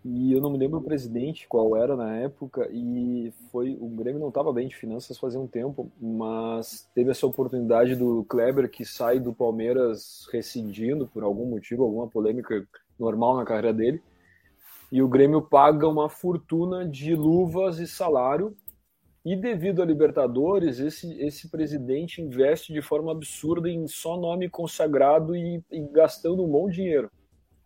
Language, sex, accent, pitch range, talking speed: Portuguese, male, Brazilian, 120-155 Hz, 160 wpm